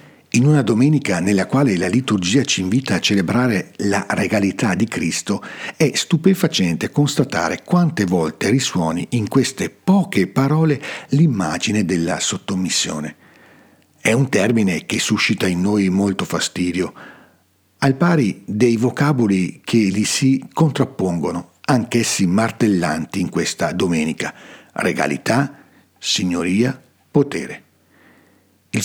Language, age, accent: Italian, 60-79, native